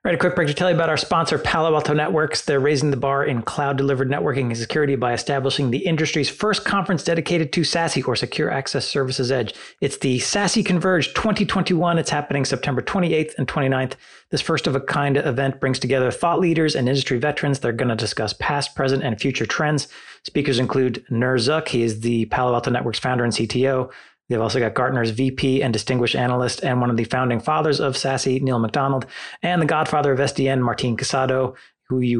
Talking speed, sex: 200 wpm, male